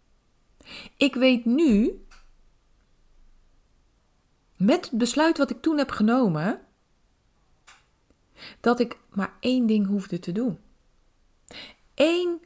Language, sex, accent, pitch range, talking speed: Dutch, female, Dutch, 190-245 Hz, 95 wpm